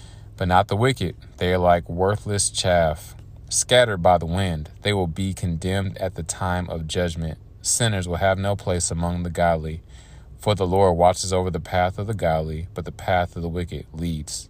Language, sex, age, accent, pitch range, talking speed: English, male, 30-49, American, 85-100 Hz, 195 wpm